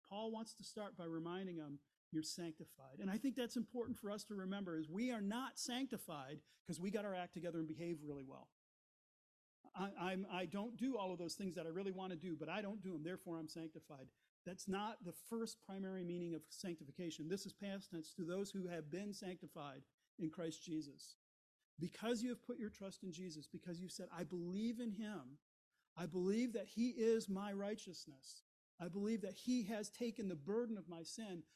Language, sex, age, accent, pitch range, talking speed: English, male, 40-59, American, 160-210 Hz, 210 wpm